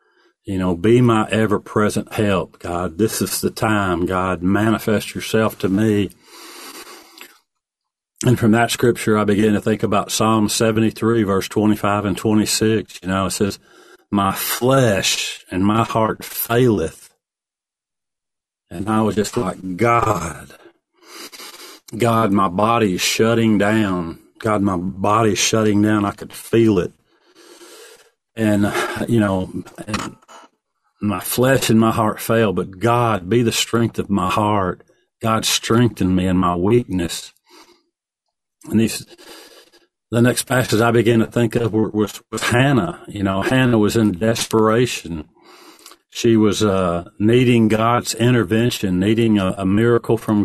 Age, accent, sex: 40-59, American, male